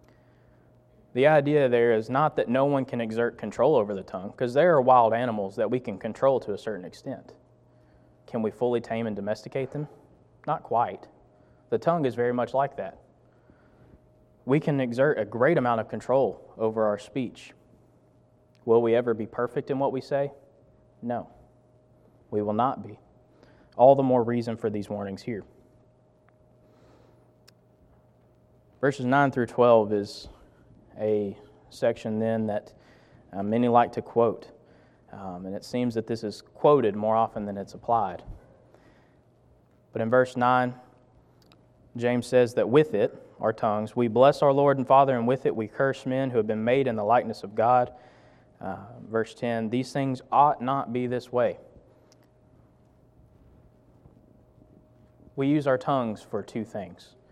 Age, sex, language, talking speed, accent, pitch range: 20-39, male, English, 160 wpm, American, 110-130 Hz